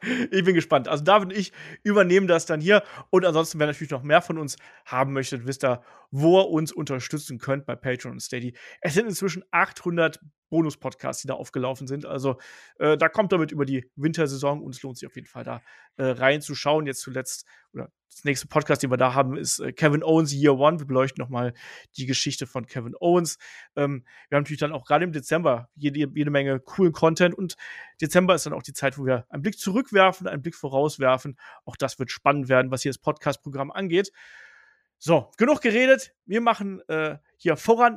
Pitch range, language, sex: 140-195 Hz, German, male